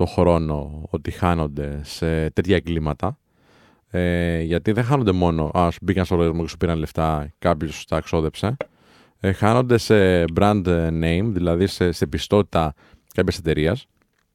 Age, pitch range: 20-39, 85-115 Hz